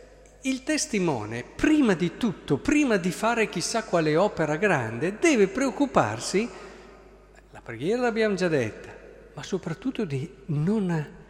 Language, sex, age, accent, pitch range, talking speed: Italian, male, 50-69, native, 145-215 Hz, 120 wpm